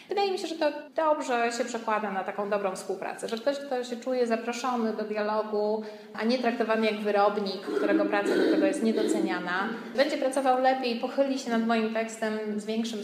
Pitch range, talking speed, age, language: 200-250 Hz, 190 wpm, 20-39, Polish